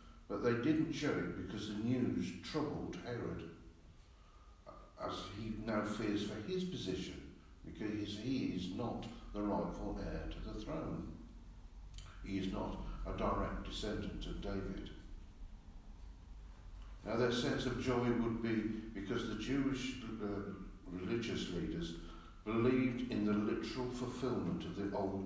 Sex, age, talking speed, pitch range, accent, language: male, 60-79, 135 wpm, 85-115 Hz, British, English